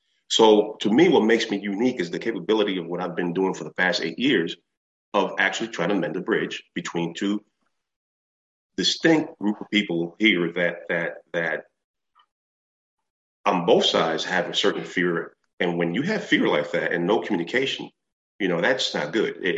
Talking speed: 185 wpm